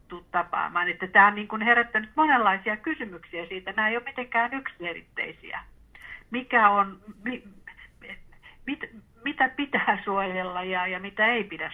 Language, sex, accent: Finnish, female, native